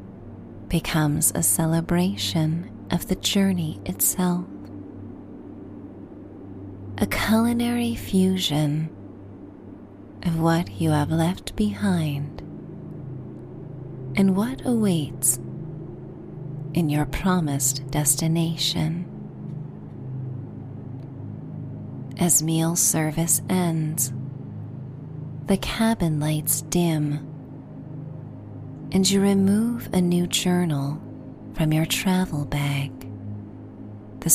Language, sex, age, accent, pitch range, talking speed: English, female, 30-49, American, 130-175 Hz, 75 wpm